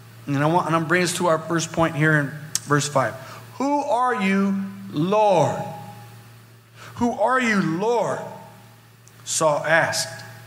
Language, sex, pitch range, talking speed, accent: English, male, 150-205 Hz, 145 wpm, American